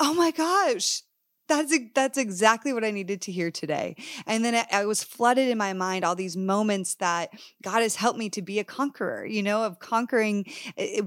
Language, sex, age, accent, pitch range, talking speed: English, female, 20-39, American, 180-235 Hz, 210 wpm